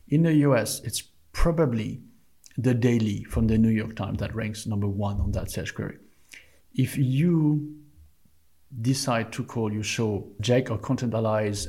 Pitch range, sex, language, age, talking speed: 110-140 Hz, male, English, 50-69, 160 wpm